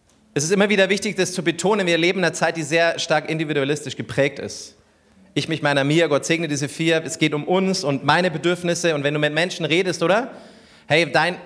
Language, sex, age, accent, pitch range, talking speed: German, male, 30-49, German, 145-180 Hz, 225 wpm